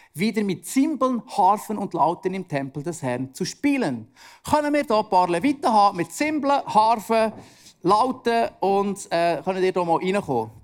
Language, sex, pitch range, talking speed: German, male, 180-260 Hz, 165 wpm